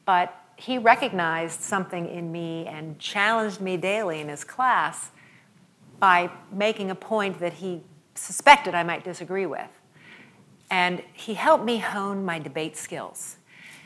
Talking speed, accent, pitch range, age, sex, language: 140 wpm, American, 165-200 Hz, 50-69, female, English